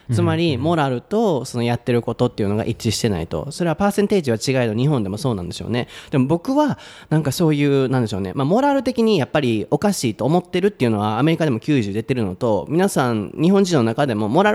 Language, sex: Japanese, male